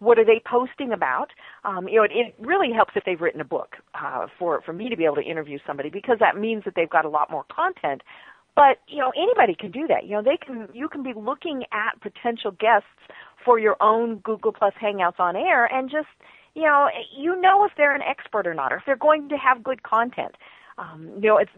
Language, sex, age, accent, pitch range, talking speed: English, female, 40-59, American, 200-285 Hz, 240 wpm